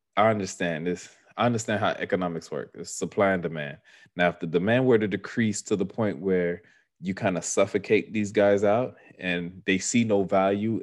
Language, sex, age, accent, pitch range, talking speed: English, male, 20-39, American, 90-105 Hz, 195 wpm